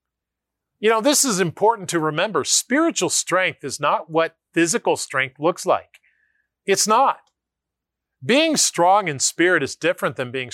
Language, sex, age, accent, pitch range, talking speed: English, male, 40-59, American, 130-210 Hz, 150 wpm